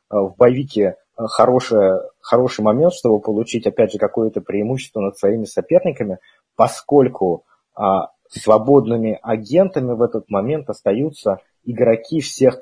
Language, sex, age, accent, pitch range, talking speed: Russian, male, 30-49, native, 105-130 Hz, 115 wpm